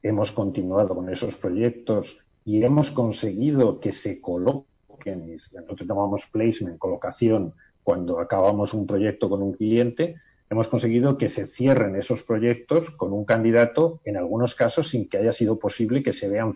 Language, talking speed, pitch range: Spanish, 155 wpm, 105-130 Hz